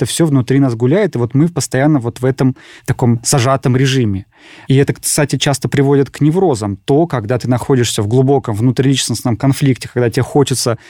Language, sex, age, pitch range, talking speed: Russian, male, 20-39, 125-150 Hz, 185 wpm